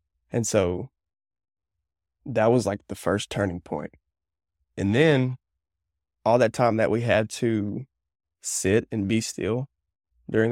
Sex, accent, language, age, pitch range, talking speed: male, American, English, 20-39, 80-115 Hz, 130 wpm